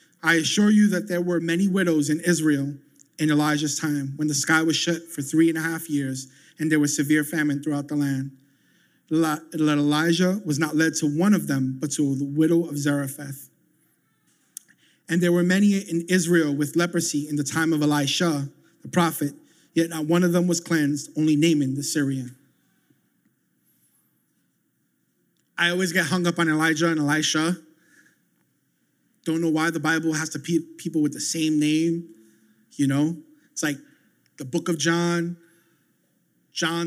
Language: English